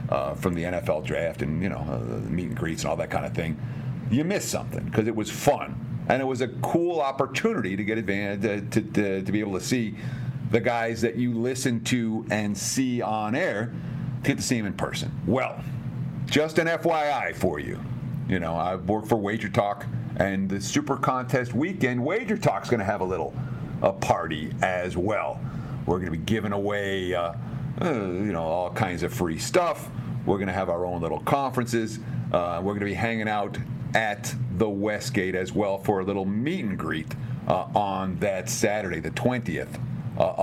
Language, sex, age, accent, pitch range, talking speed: English, male, 50-69, American, 100-130 Hz, 205 wpm